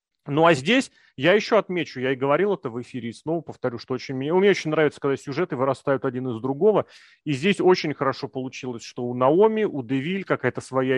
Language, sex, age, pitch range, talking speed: Russian, male, 30-49, 125-160 Hz, 210 wpm